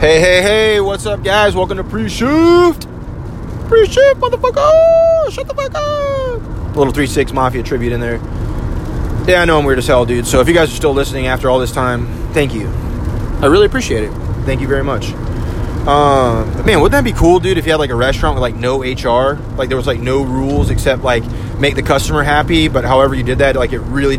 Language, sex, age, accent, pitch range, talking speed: English, male, 20-39, American, 115-155 Hz, 225 wpm